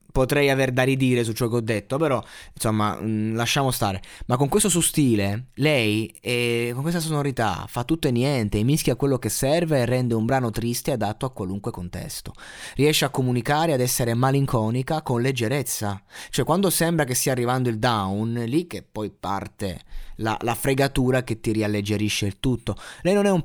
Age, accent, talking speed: 20-39, native, 185 wpm